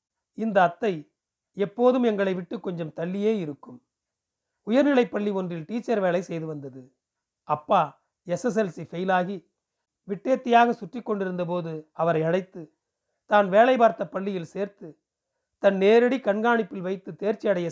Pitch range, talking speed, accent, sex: 165-210 Hz, 120 wpm, native, male